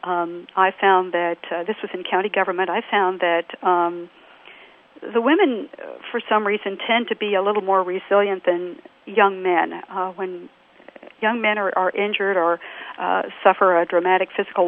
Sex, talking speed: female, 170 wpm